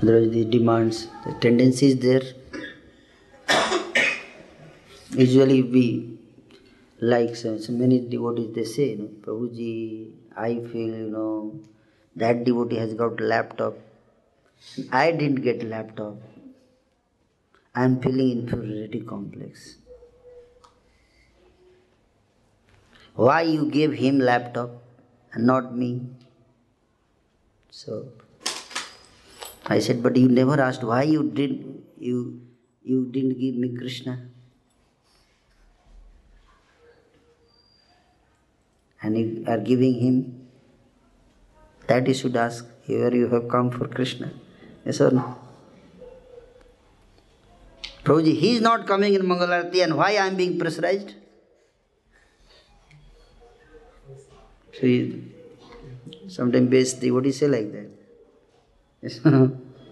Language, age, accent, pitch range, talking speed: Hindi, 20-39, native, 115-140 Hz, 100 wpm